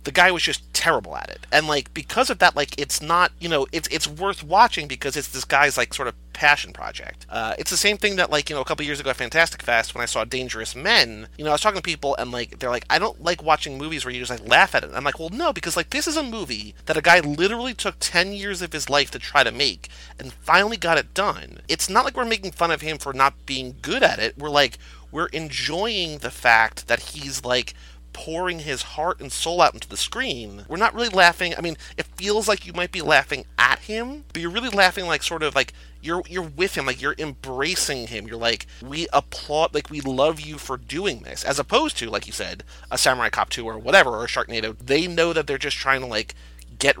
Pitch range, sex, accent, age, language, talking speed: 125-180 Hz, male, American, 30-49, English, 260 wpm